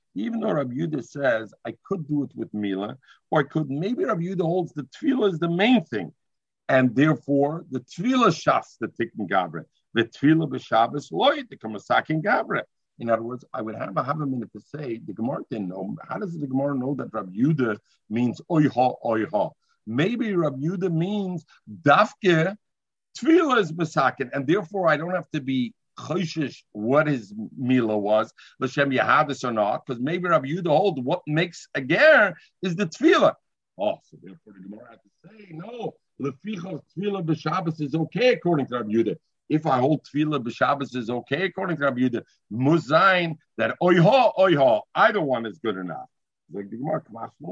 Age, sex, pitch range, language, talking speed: 50-69, male, 125-180 Hz, English, 180 wpm